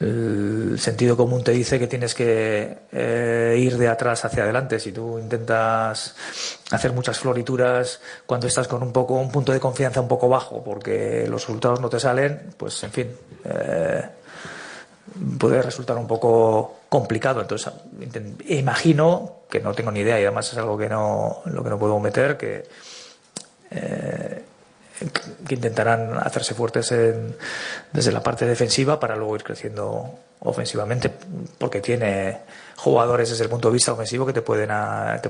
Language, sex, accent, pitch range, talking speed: Spanish, male, Spanish, 115-130 Hz, 160 wpm